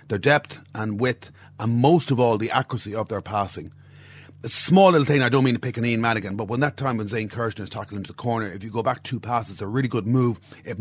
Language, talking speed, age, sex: English, 270 wpm, 30-49, male